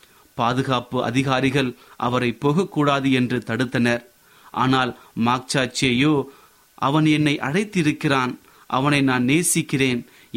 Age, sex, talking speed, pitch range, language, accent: 30-49, male, 80 wpm, 130-155 Hz, Tamil, native